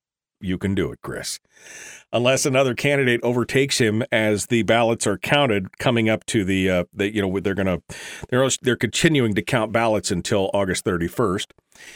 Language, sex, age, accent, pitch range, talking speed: English, male, 40-59, American, 105-135 Hz, 175 wpm